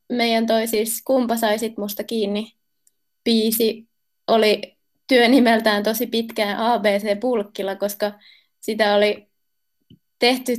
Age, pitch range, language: 20-39, 210-240 Hz, Finnish